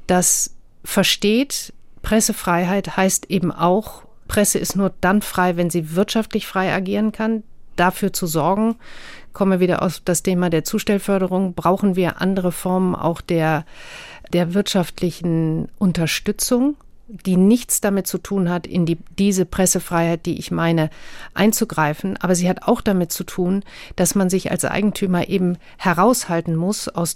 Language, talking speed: German, 150 wpm